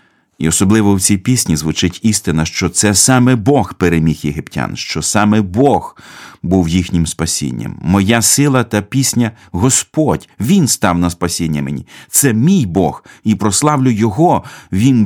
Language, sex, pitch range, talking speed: Ukrainian, male, 90-120 Hz, 150 wpm